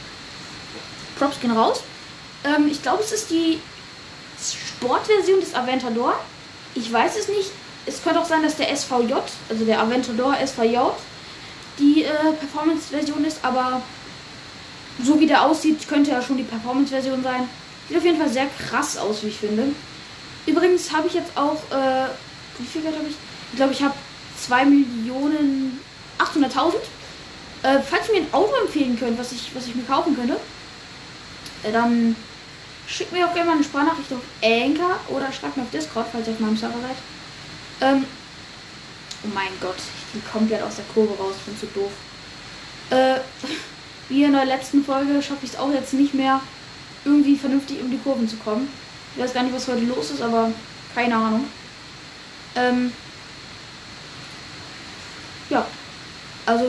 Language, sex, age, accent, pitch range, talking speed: German, female, 10-29, German, 245-295 Hz, 160 wpm